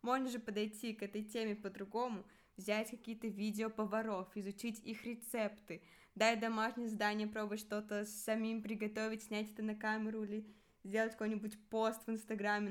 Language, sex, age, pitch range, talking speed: Russian, female, 20-39, 210-240 Hz, 145 wpm